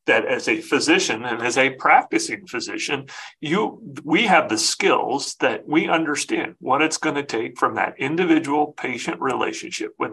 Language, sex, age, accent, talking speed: English, male, 40-59, American, 165 wpm